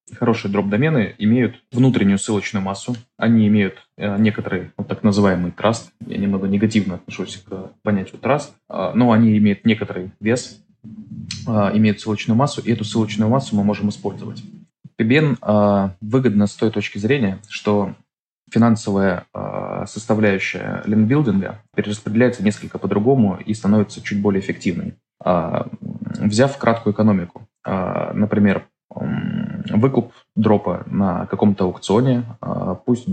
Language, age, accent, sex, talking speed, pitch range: Russian, 20-39, native, male, 125 wpm, 95-110 Hz